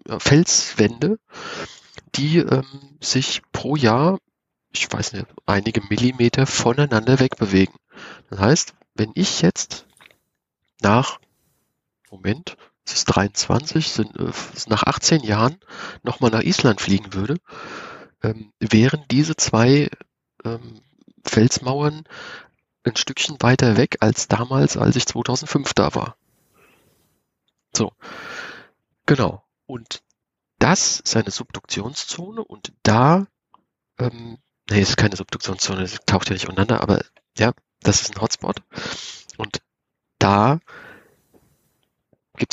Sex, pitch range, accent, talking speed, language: male, 105-145 Hz, German, 110 wpm, German